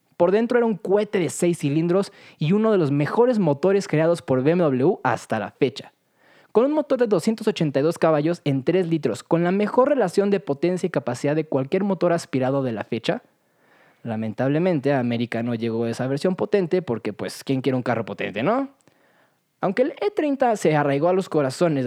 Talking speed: 185 wpm